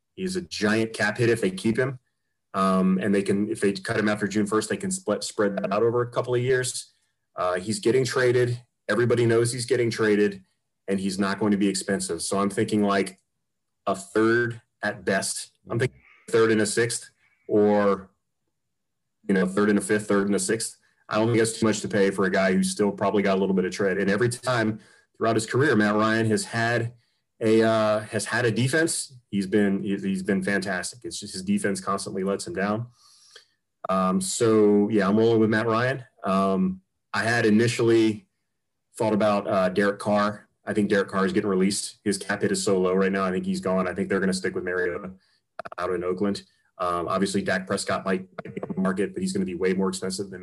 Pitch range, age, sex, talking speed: 95-115 Hz, 30-49, male, 220 wpm